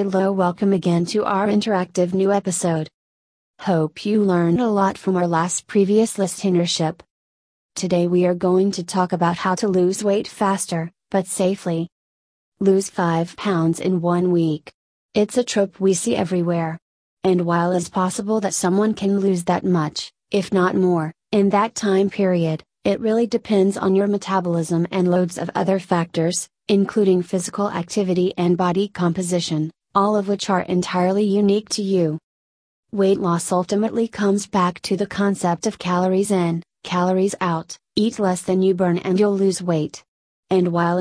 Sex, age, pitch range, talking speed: female, 30-49, 175-200 Hz, 160 wpm